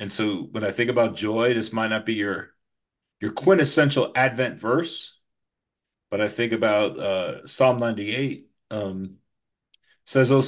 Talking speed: 150 wpm